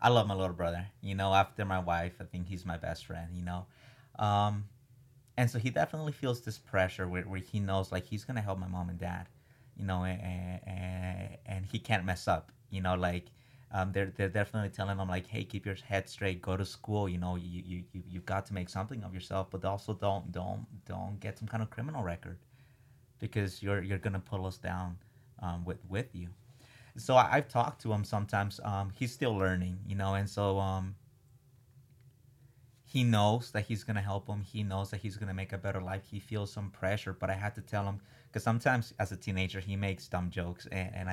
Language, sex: English, male